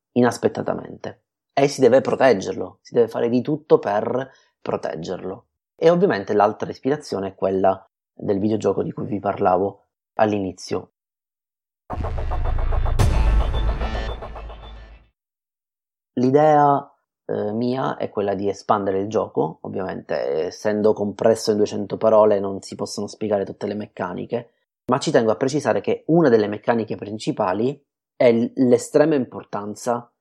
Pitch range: 100-135 Hz